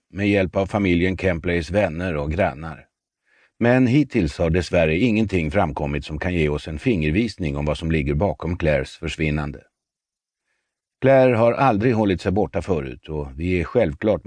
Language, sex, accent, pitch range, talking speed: Swedish, male, native, 80-110 Hz, 160 wpm